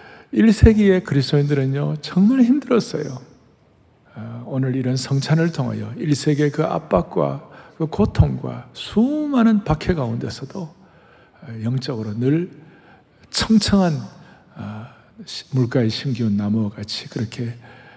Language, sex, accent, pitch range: Korean, male, native, 115-155 Hz